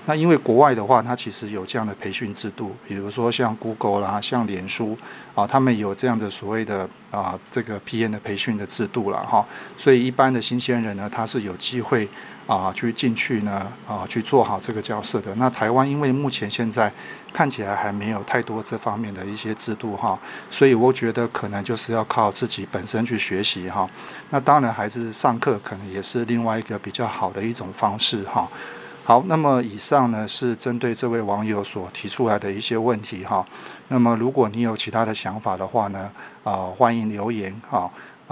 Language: Chinese